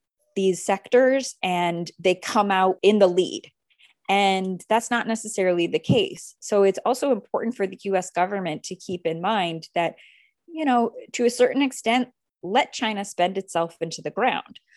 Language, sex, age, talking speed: English, female, 20-39, 165 wpm